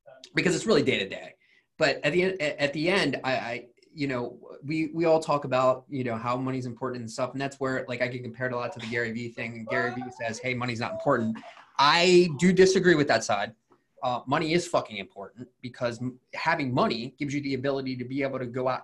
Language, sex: English, male